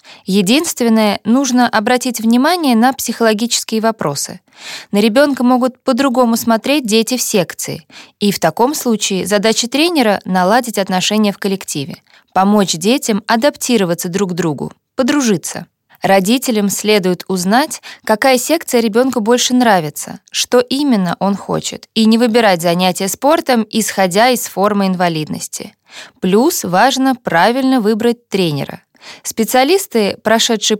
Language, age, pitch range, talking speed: Russian, 20-39, 195-250 Hz, 115 wpm